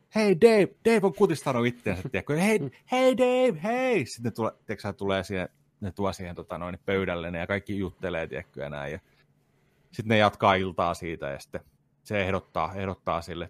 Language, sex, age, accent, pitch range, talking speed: Finnish, male, 30-49, native, 90-130 Hz, 155 wpm